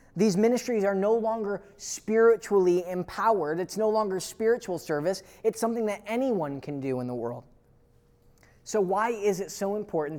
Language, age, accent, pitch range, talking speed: English, 20-39, American, 145-205 Hz, 160 wpm